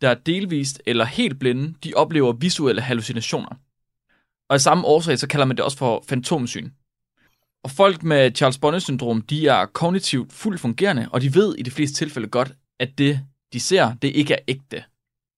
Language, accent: Danish, native